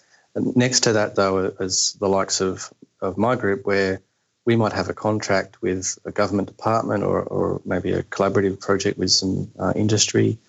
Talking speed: 175 wpm